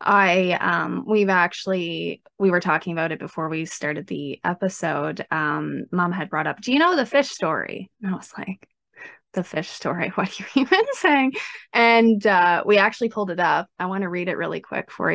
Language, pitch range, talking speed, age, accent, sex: English, 185-230 Hz, 205 wpm, 20-39, American, female